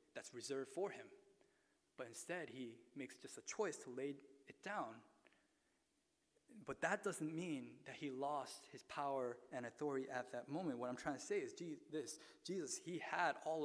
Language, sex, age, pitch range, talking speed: English, male, 20-39, 130-160 Hz, 175 wpm